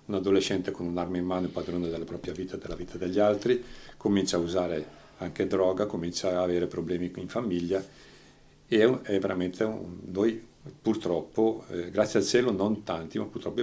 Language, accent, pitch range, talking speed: Italian, native, 90-105 Hz, 185 wpm